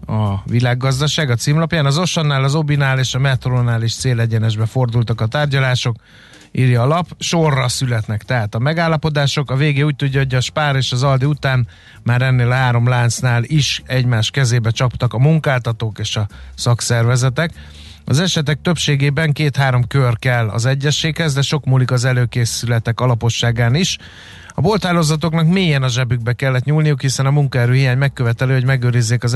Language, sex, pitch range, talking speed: Hungarian, male, 120-140 Hz, 160 wpm